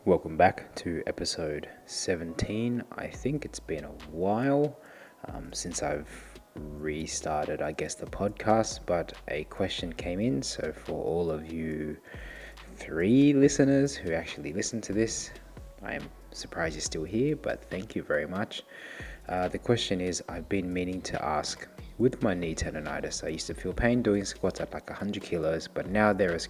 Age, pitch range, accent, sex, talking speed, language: 20-39, 80-110 Hz, Australian, male, 170 wpm, English